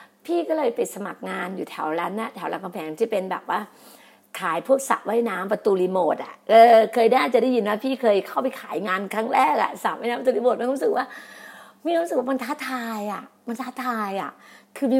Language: Thai